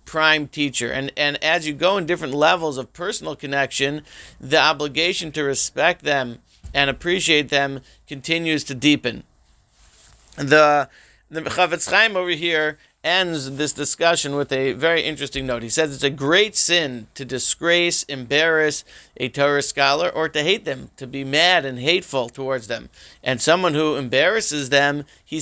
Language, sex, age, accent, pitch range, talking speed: English, male, 40-59, American, 135-155 Hz, 155 wpm